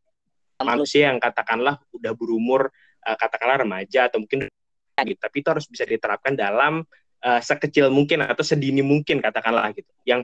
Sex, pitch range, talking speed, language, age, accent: male, 110-145 Hz, 160 wpm, Indonesian, 20-39, native